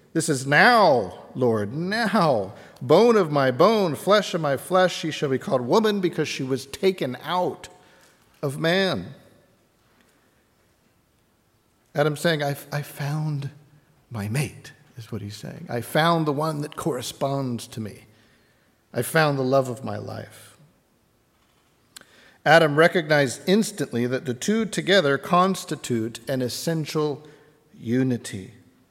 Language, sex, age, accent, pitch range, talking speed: English, male, 50-69, American, 120-155 Hz, 130 wpm